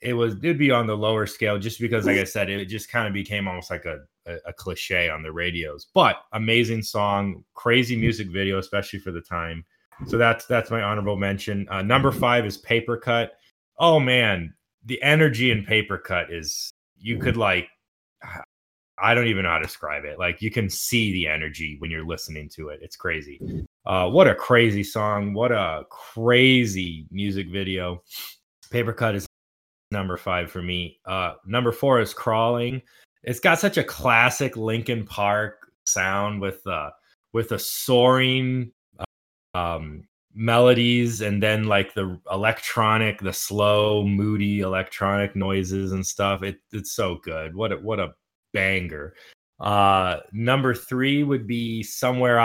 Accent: American